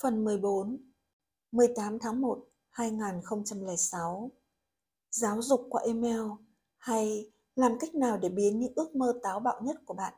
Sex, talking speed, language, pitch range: female, 140 wpm, Vietnamese, 200-240 Hz